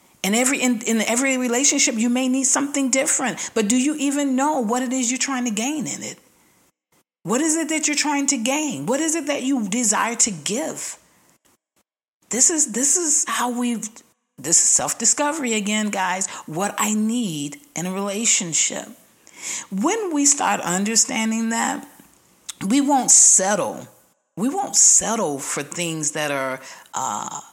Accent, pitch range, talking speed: American, 190-265 Hz, 165 wpm